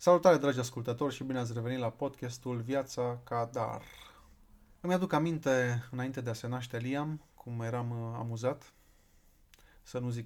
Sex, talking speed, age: male, 160 wpm, 30-49